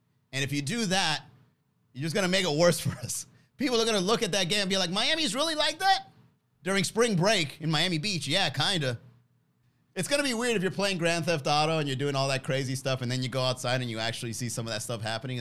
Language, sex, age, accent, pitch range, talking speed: English, male, 30-49, American, 125-165 Hz, 275 wpm